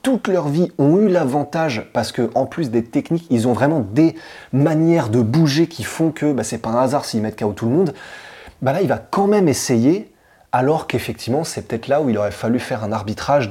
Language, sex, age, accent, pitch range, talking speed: French, male, 20-39, French, 115-150 Hz, 240 wpm